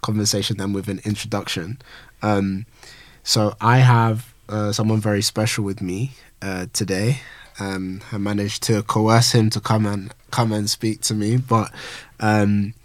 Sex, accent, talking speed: male, British, 155 wpm